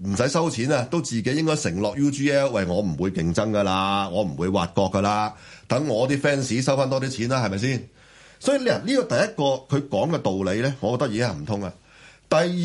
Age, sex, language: 30-49, male, Chinese